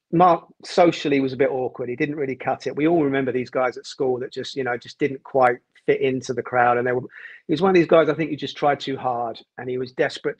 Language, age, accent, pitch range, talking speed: English, 40-59, British, 125-150 Hz, 285 wpm